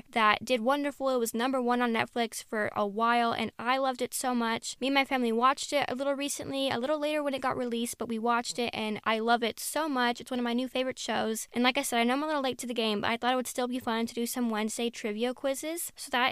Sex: female